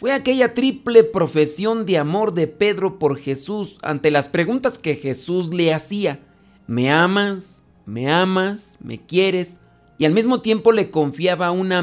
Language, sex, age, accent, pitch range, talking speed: Spanish, male, 40-59, Mexican, 145-200 Hz, 150 wpm